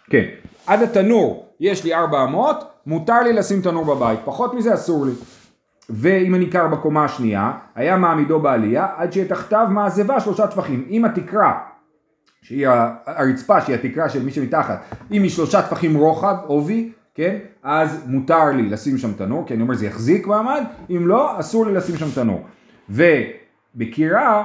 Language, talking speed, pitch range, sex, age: Hebrew, 155 wpm, 155-235 Hz, male, 30-49